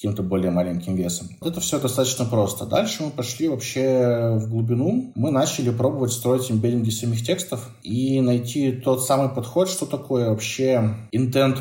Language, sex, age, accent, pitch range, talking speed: Russian, male, 20-39, native, 105-130 Hz, 160 wpm